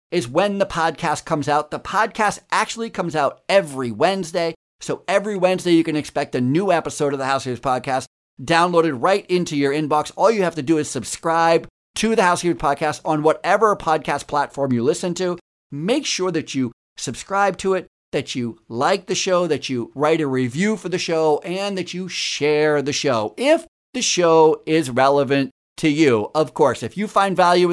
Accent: American